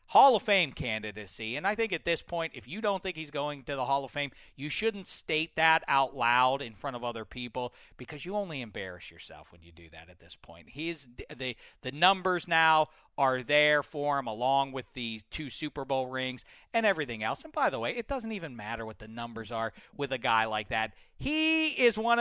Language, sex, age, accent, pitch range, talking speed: English, male, 40-59, American, 125-170 Hz, 225 wpm